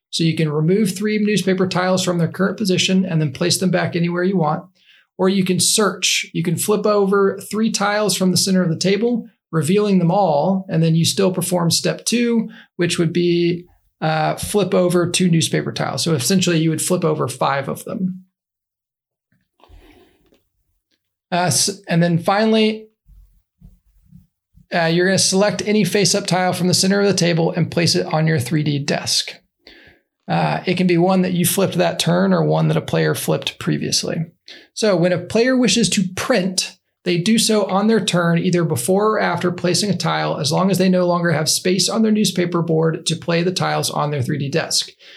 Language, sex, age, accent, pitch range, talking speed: English, male, 40-59, American, 170-200 Hz, 190 wpm